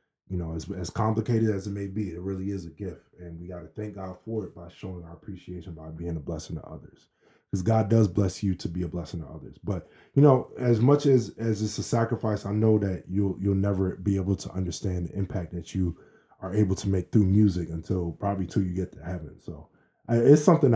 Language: English